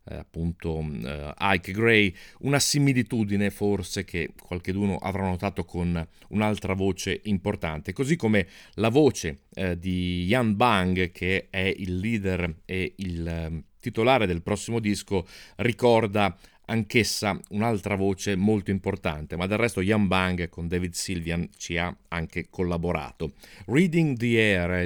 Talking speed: 135 wpm